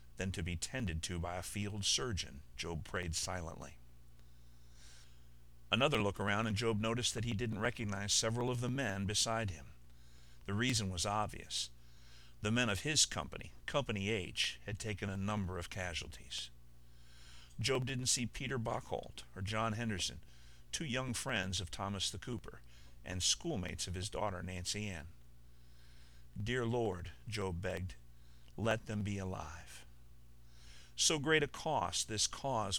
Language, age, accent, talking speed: English, 50-69, American, 150 wpm